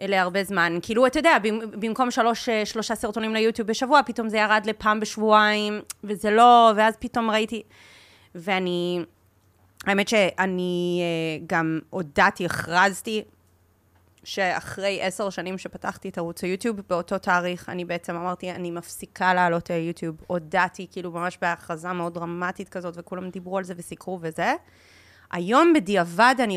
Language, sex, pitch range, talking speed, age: Hebrew, female, 175-230 Hz, 135 wpm, 30-49